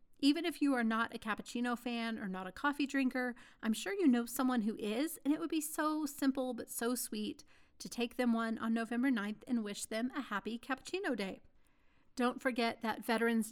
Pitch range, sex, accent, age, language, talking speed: 215-260 Hz, female, American, 30-49, English, 210 wpm